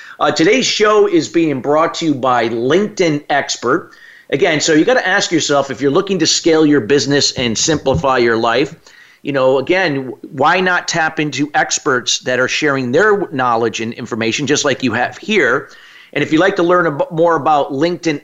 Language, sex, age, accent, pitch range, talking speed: English, male, 40-59, American, 130-170 Hz, 190 wpm